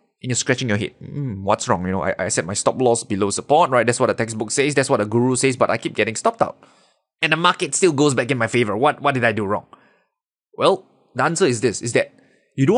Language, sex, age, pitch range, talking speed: English, male, 20-39, 115-150 Hz, 275 wpm